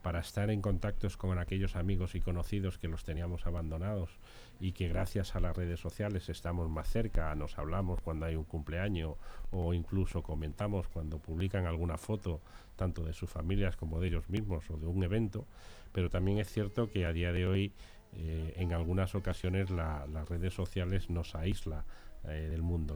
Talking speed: 180 wpm